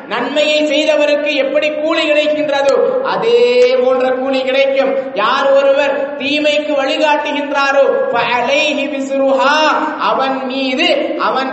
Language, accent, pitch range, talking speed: English, Indian, 260-295 Hz, 130 wpm